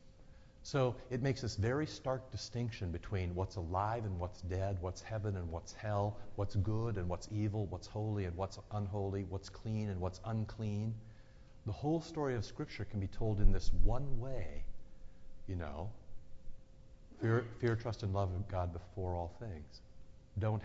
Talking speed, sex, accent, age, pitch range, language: 170 wpm, male, American, 50-69, 95-115 Hz, English